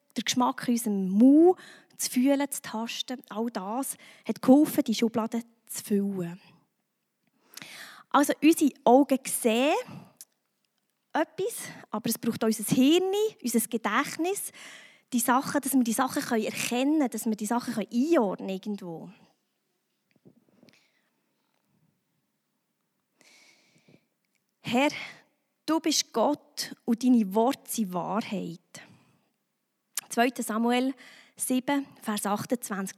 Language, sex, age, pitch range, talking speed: German, female, 20-39, 220-280 Hz, 105 wpm